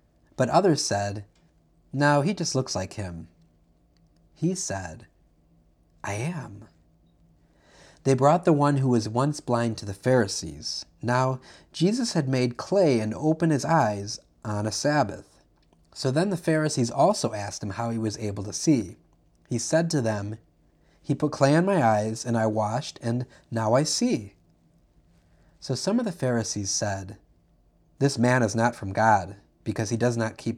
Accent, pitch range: American, 95-140 Hz